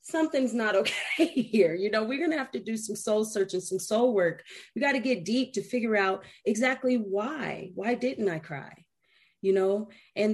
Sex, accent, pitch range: female, American, 185-250 Hz